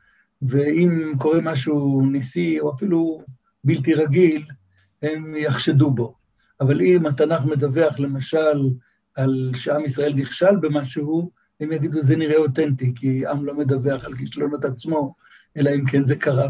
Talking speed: 140 wpm